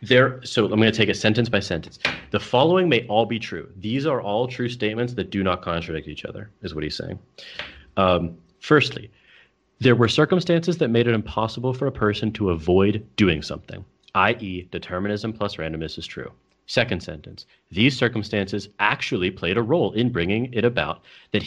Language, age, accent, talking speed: English, 30-49, American, 185 wpm